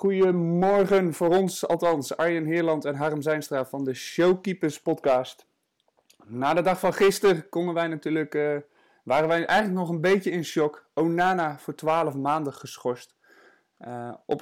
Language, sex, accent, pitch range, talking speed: Dutch, male, Dutch, 130-175 Hz, 155 wpm